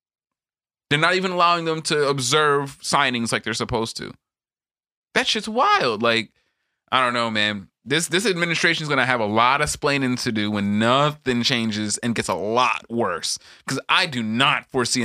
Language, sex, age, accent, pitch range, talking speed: English, male, 20-39, American, 115-155 Hz, 180 wpm